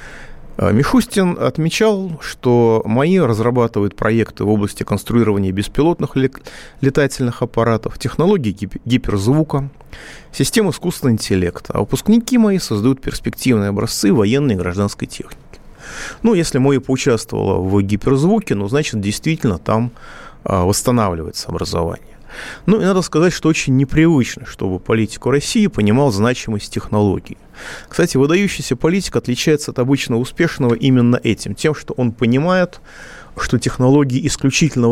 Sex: male